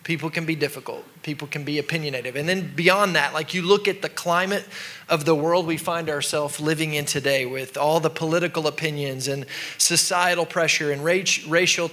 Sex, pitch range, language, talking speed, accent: male, 150-180 Hz, English, 185 wpm, American